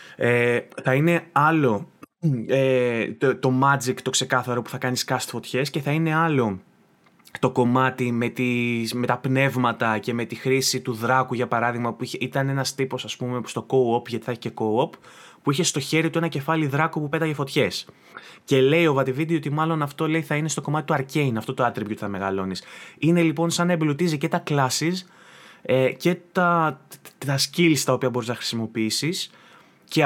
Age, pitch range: 20-39, 125-160 Hz